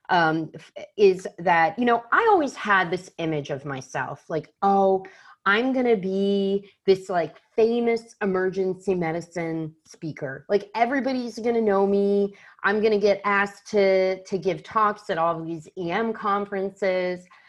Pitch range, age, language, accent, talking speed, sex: 170-230 Hz, 30-49, English, American, 140 wpm, female